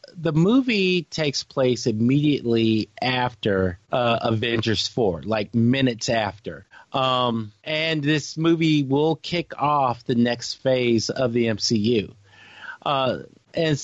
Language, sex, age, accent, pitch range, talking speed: English, male, 40-59, American, 115-145 Hz, 115 wpm